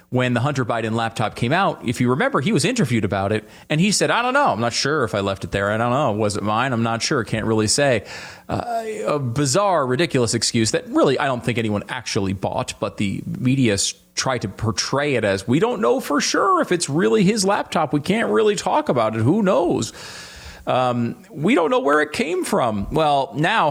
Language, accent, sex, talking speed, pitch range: English, American, male, 230 wpm, 105-145 Hz